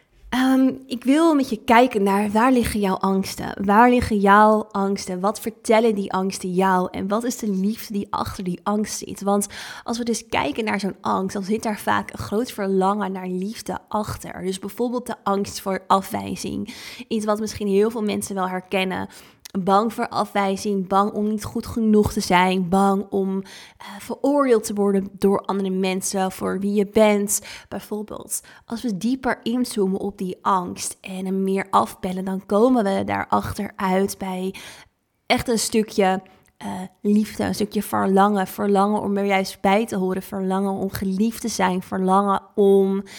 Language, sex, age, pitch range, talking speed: Dutch, female, 20-39, 190-215 Hz, 170 wpm